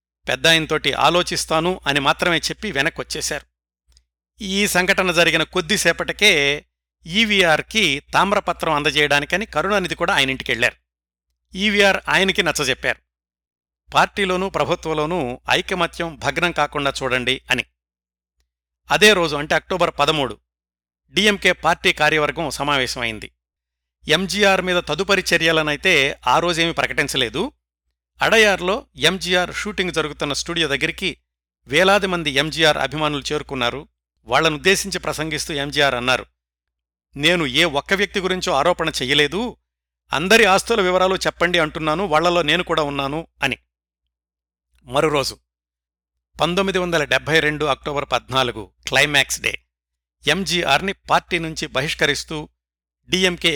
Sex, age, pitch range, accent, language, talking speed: male, 60-79, 105-175 Hz, native, Telugu, 95 wpm